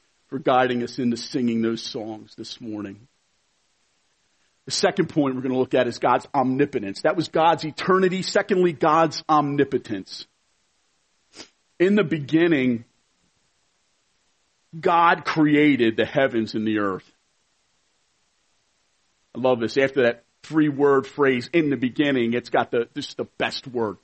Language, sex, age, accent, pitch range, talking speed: English, male, 40-59, American, 120-165 Hz, 130 wpm